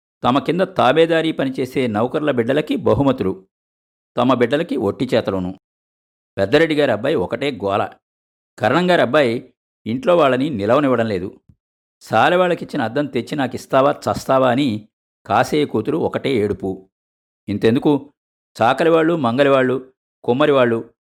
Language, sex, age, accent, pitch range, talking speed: Telugu, male, 50-69, native, 105-150 Hz, 95 wpm